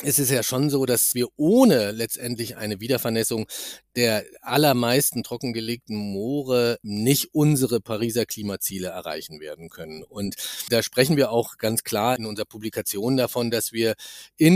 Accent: German